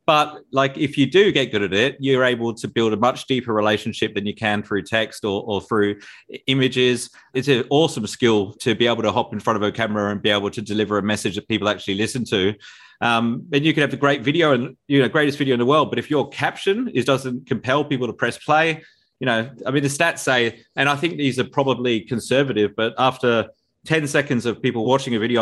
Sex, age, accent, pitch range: male, 30-49, Australian, 110-135 Hz